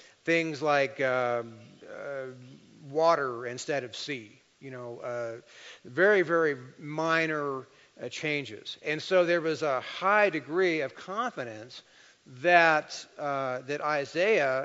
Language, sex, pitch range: English, male, 130-165 Hz